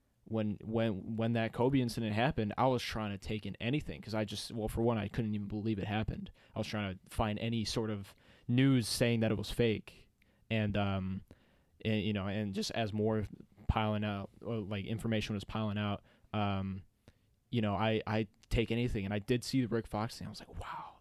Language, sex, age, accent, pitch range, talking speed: English, male, 20-39, American, 100-115 Hz, 215 wpm